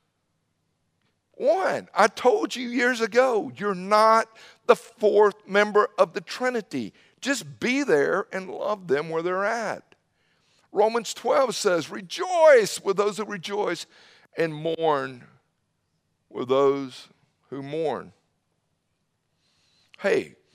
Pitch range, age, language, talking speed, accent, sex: 170-210 Hz, 50-69, English, 110 wpm, American, male